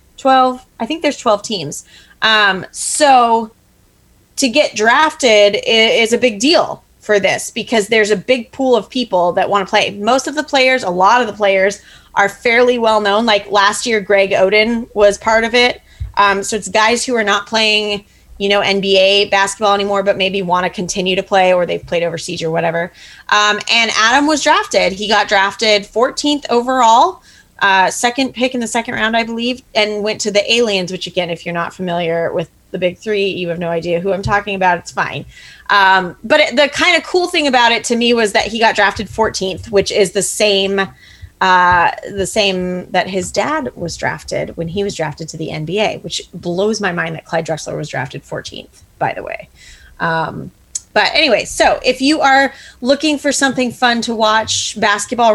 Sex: female